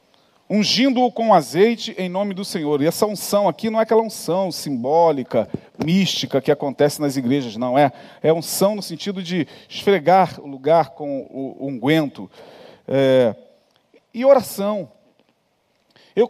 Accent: Brazilian